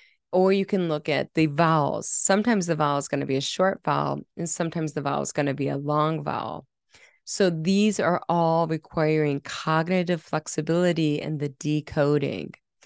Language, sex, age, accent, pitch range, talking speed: English, female, 20-39, American, 145-175 Hz, 175 wpm